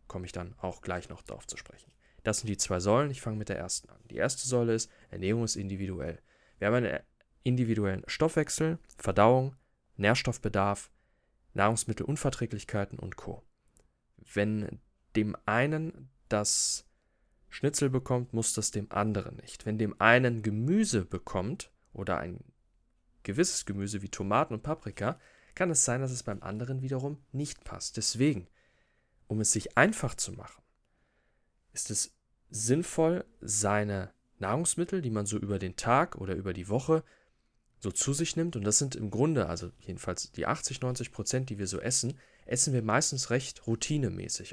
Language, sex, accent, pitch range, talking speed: German, male, German, 105-135 Hz, 160 wpm